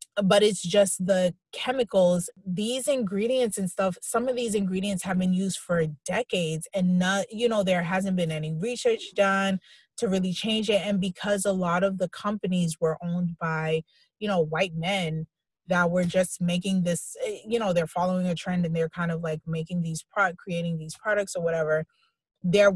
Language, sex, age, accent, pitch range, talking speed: English, female, 20-39, American, 170-200 Hz, 185 wpm